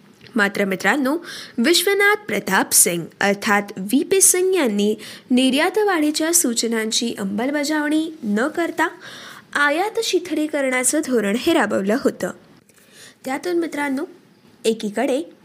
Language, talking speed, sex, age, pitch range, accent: Marathi, 95 wpm, female, 20-39, 220-315 Hz, native